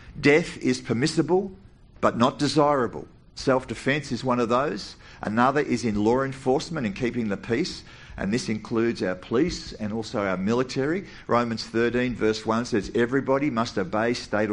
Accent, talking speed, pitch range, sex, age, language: Australian, 155 wpm, 105-140 Hz, male, 50-69, English